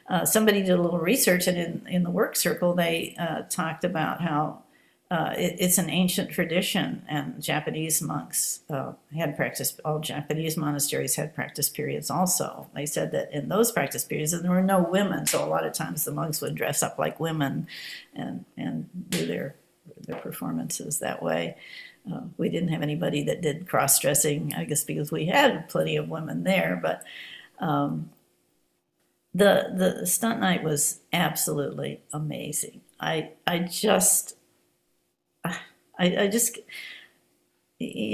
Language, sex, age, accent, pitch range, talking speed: English, female, 60-79, American, 150-185 Hz, 155 wpm